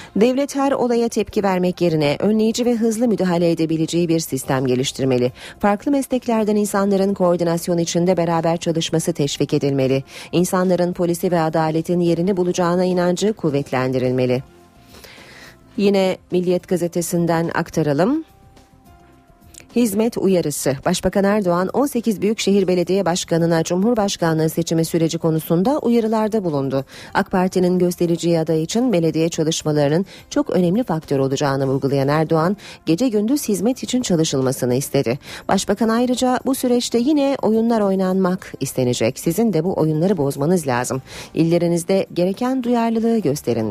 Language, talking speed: Turkish, 120 wpm